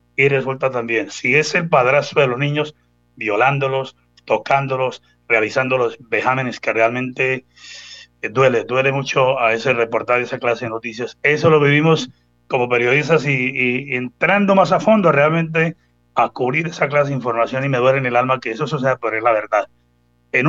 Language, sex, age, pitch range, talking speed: Spanish, male, 30-49, 115-150 Hz, 170 wpm